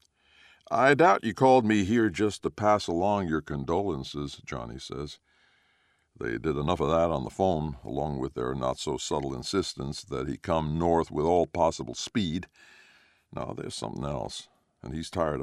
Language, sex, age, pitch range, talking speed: English, male, 60-79, 80-105 Hz, 165 wpm